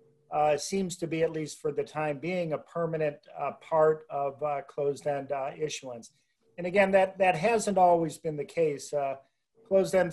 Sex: male